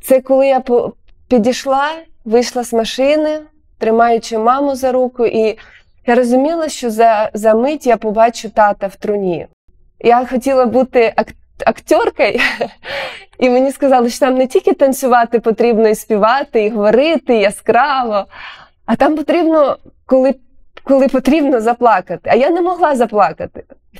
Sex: female